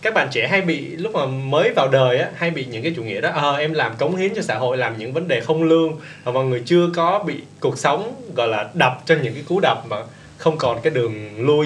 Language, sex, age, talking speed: Vietnamese, male, 20-39, 280 wpm